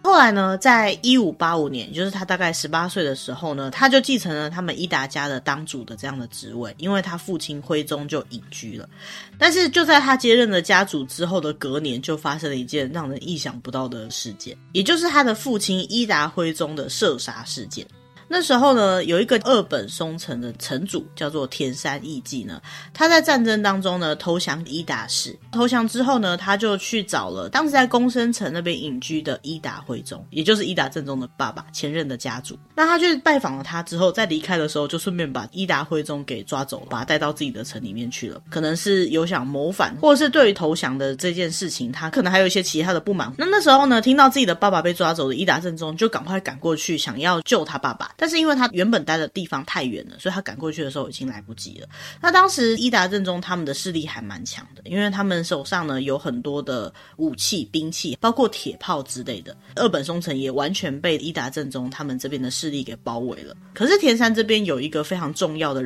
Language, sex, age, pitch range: Chinese, female, 20-39, 140-205 Hz